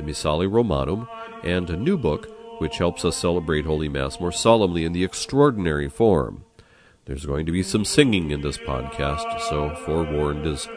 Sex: male